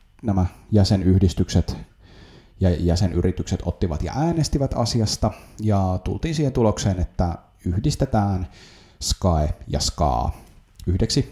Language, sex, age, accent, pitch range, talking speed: Finnish, male, 30-49, native, 85-105 Hz, 95 wpm